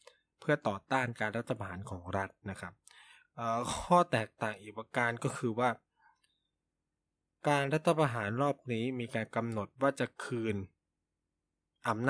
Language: Thai